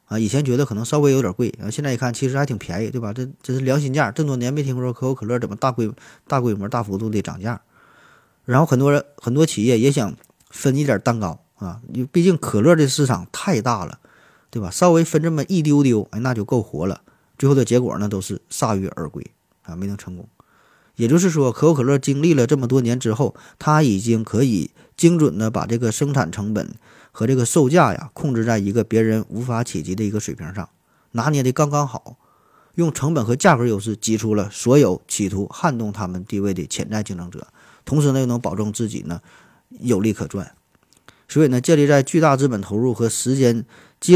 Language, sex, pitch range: Chinese, male, 105-140 Hz